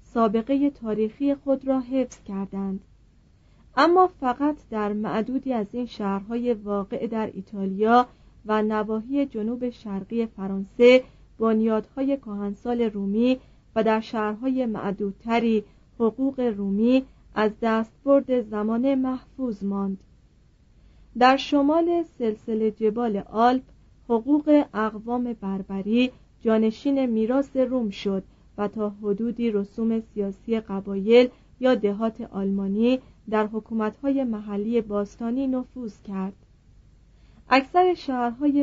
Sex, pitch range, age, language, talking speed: female, 210-255 Hz, 40-59, Persian, 100 wpm